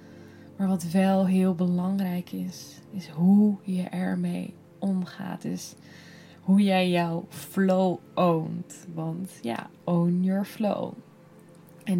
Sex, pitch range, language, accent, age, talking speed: female, 185-215 Hz, Dutch, Dutch, 10-29, 120 wpm